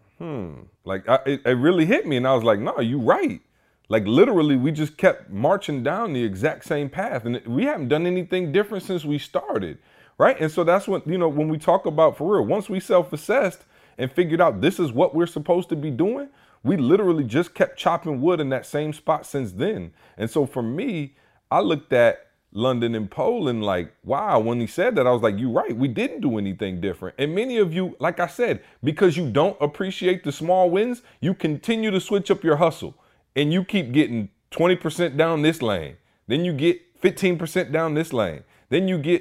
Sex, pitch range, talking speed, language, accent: male, 130-185 Hz, 215 wpm, English, American